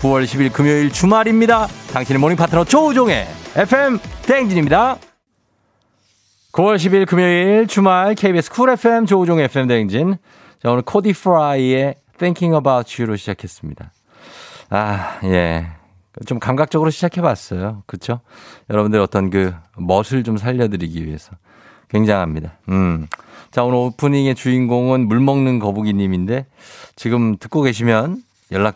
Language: Korean